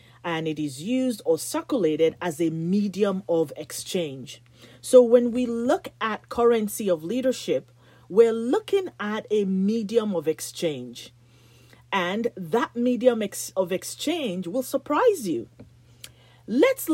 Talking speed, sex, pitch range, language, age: 125 wpm, female, 150-245 Hz, English, 40-59